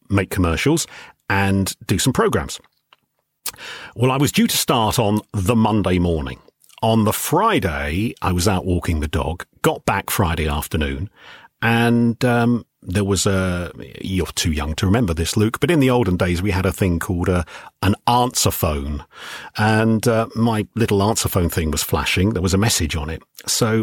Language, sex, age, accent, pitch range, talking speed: English, male, 40-59, British, 90-125 Hz, 180 wpm